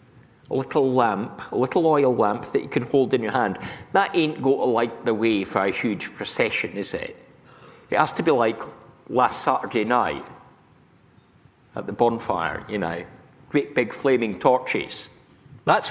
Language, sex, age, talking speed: English, male, 50-69, 170 wpm